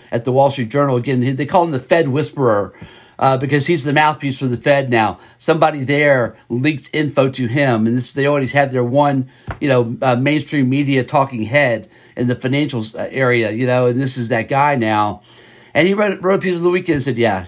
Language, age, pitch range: English, 50-69, 120-155 Hz